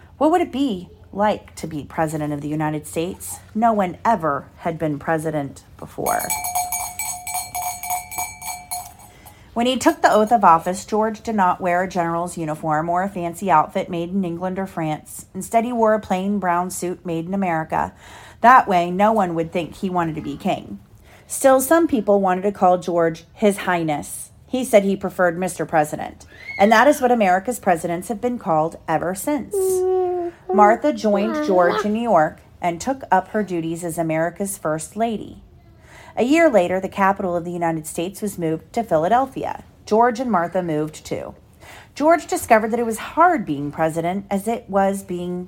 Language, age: English, 40-59